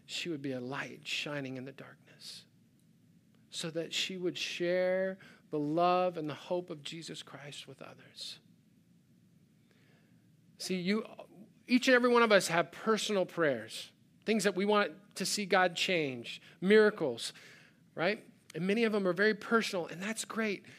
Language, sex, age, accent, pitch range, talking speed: English, male, 40-59, American, 160-205 Hz, 160 wpm